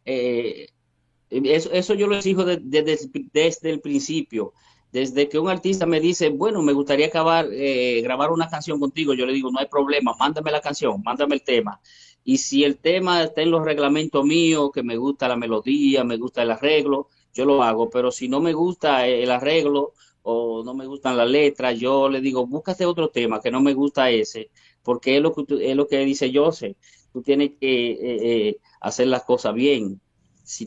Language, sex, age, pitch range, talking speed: Spanish, male, 50-69, 120-145 Hz, 205 wpm